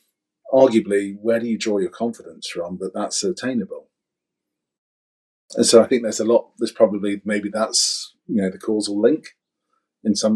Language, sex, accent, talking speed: English, male, British, 170 wpm